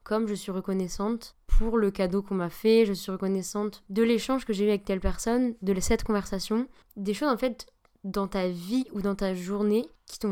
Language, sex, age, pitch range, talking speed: French, female, 20-39, 190-225 Hz, 215 wpm